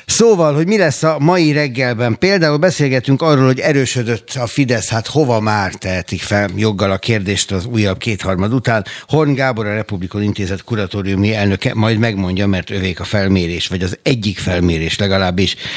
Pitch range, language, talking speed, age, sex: 95-120 Hz, Hungarian, 165 wpm, 60-79, male